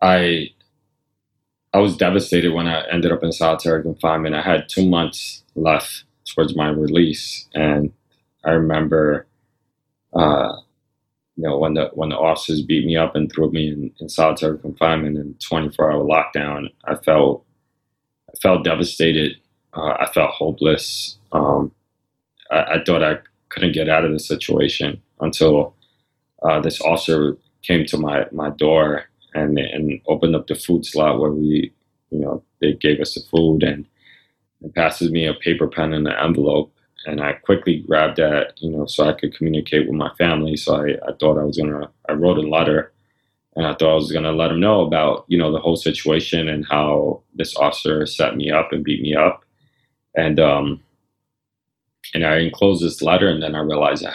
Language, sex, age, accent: English, male, 20-39, American